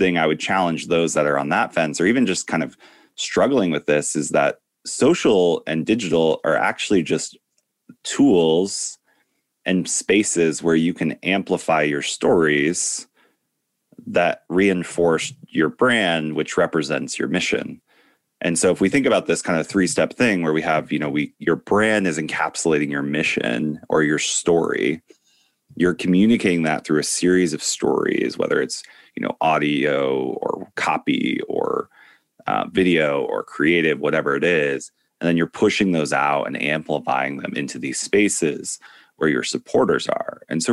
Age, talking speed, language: 30-49, 160 wpm, English